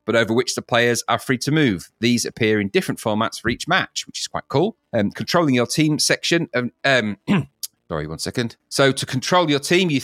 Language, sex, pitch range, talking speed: English, male, 115-150 Hz, 220 wpm